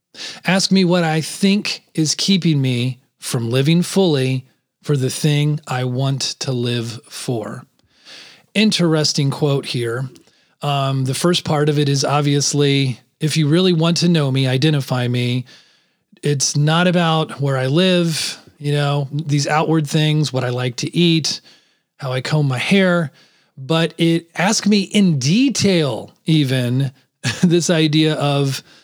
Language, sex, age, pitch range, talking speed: English, male, 30-49, 140-180 Hz, 145 wpm